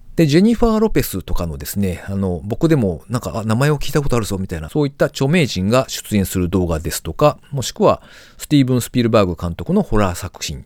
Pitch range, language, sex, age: 90-140 Hz, Japanese, male, 40-59